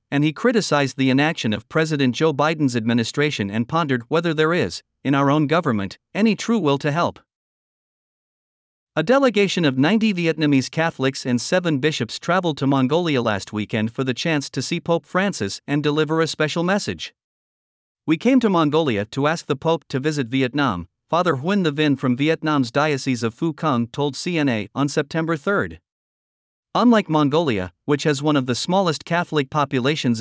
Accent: American